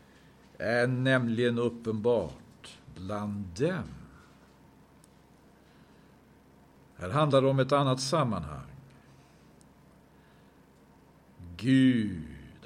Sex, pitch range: male, 90-125 Hz